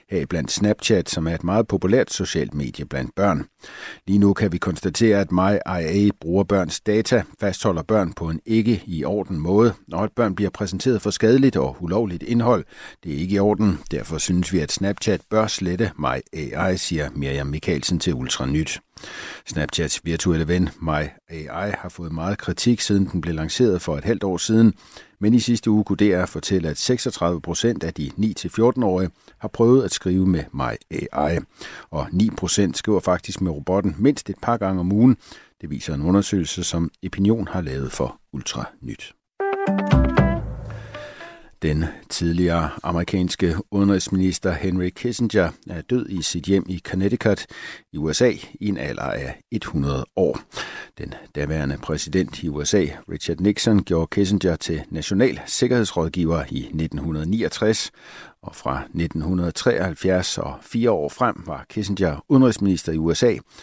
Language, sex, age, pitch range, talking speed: Danish, male, 60-79, 80-105 Hz, 160 wpm